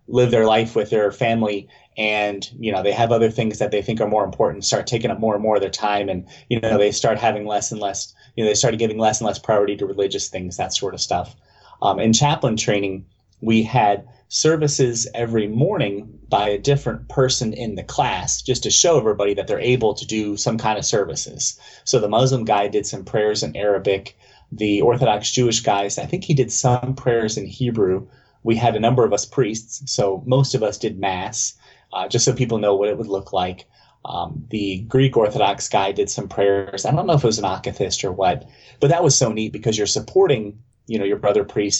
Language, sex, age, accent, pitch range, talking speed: English, male, 30-49, American, 105-125 Hz, 225 wpm